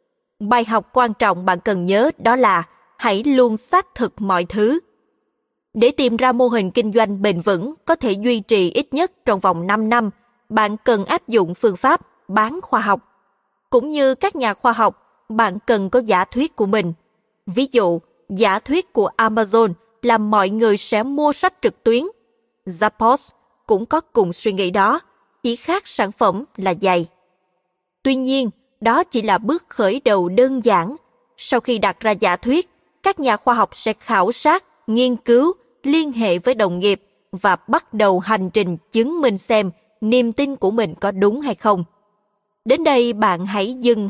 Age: 20-39